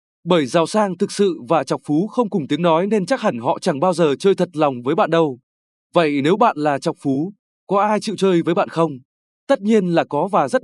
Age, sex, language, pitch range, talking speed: 20-39, male, Vietnamese, 150-205 Hz, 250 wpm